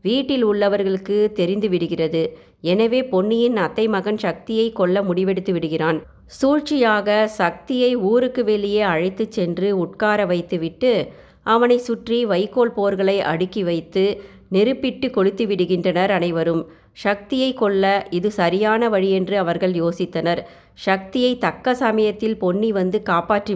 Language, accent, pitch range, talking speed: Tamil, native, 180-220 Hz, 110 wpm